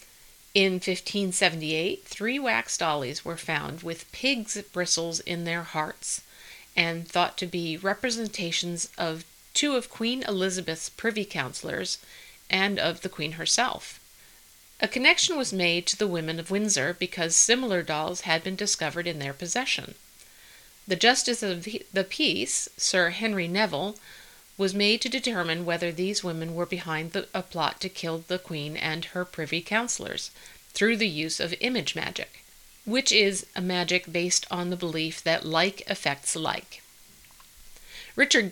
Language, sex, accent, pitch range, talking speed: English, female, American, 165-210 Hz, 145 wpm